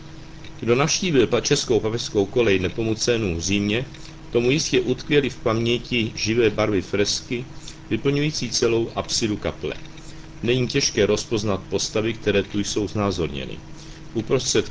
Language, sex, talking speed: Czech, male, 120 wpm